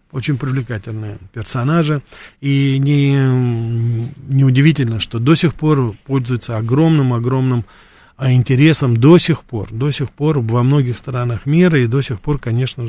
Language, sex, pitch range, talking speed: Russian, male, 120-155 Hz, 125 wpm